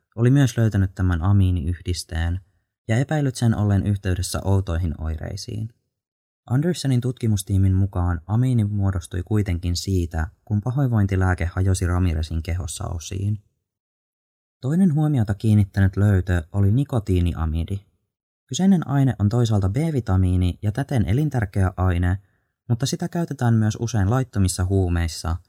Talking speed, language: 110 wpm, Finnish